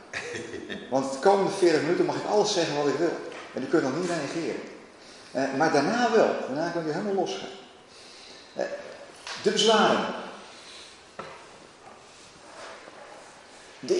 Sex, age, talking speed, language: male, 40-59, 125 wpm, Dutch